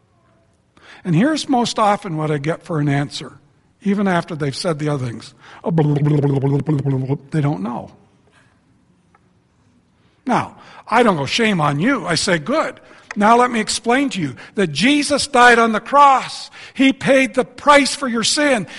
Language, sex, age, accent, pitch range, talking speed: English, male, 60-79, American, 170-260 Hz, 155 wpm